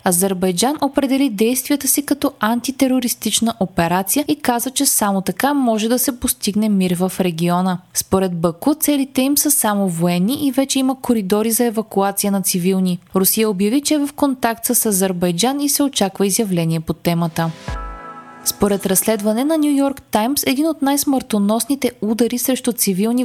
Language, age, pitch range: Bulgarian, 20-39, 195-265 Hz